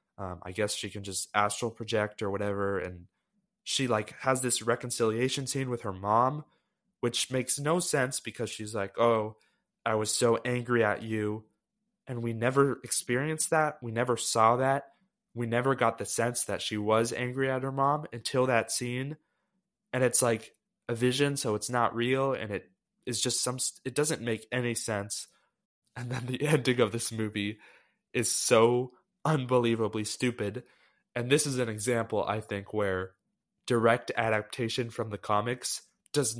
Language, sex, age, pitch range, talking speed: English, male, 20-39, 105-130 Hz, 170 wpm